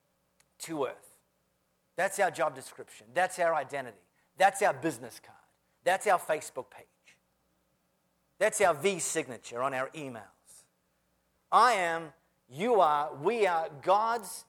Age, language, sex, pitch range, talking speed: 40-59, English, male, 120-180 Hz, 130 wpm